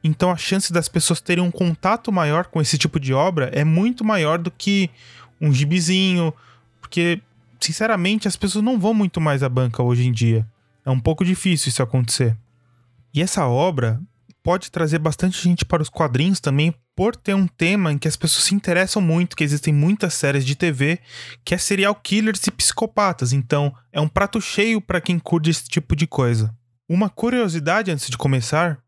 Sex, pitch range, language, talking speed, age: male, 135-185 Hz, Portuguese, 190 wpm, 20-39